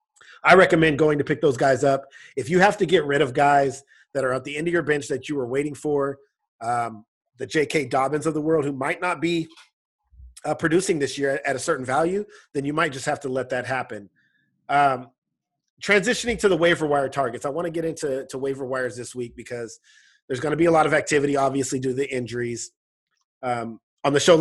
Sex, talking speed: male, 225 wpm